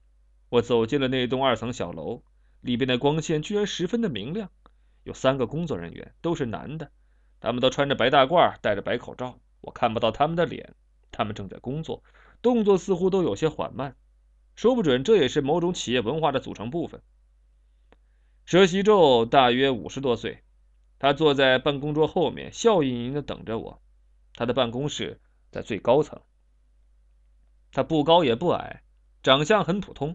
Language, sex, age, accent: Chinese, male, 20-39, native